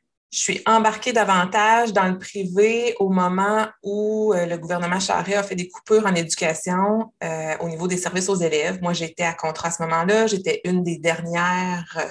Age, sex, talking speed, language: 20-39, female, 190 wpm, French